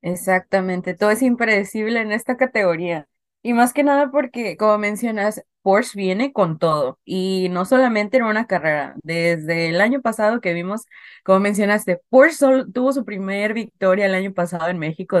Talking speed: 170 wpm